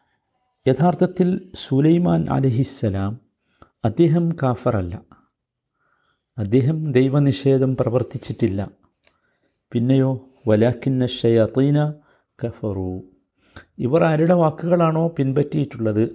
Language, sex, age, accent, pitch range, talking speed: Malayalam, male, 50-69, native, 110-150 Hz, 65 wpm